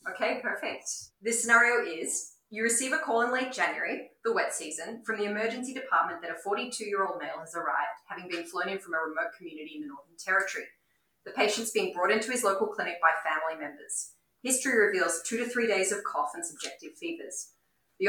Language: English